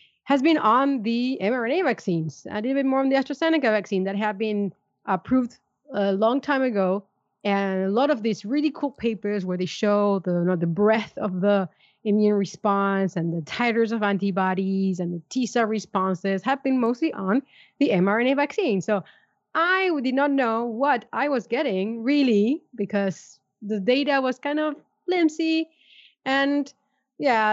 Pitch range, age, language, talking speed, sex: 205-275 Hz, 30-49, English, 170 wpm, female